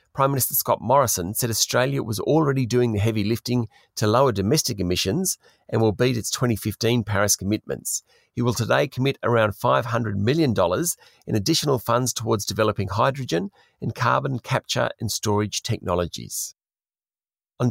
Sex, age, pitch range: male, 40-59, 105-135 Hz